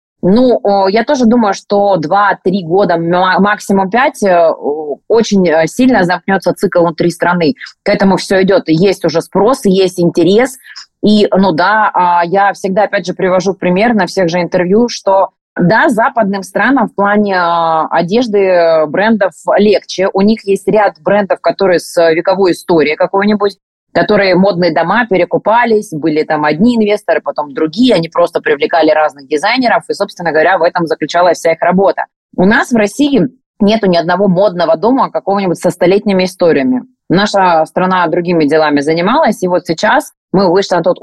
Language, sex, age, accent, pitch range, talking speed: Russian, female, 20-39, native, 170-210 Hz, 155 wpm